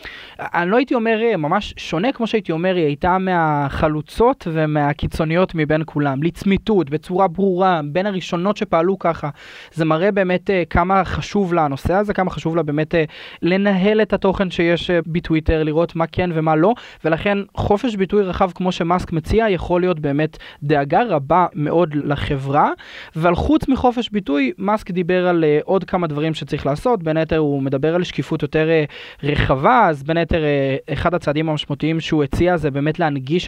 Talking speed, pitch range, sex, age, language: 165 wpm, 155-195 Hz, male, 20-39, Hebrew